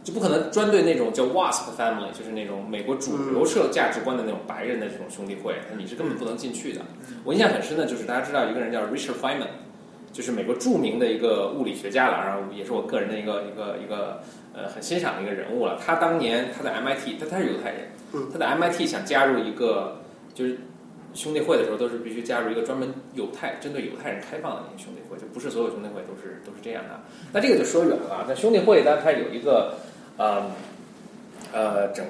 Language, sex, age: Chinese, male, 20-39